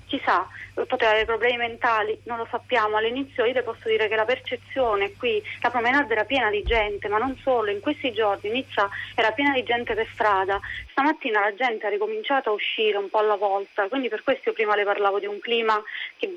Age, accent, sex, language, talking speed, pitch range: 30-49, native, female, Italian, 215 wpm, 215-260 Hz